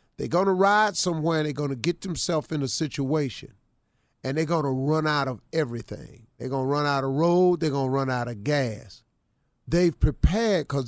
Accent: American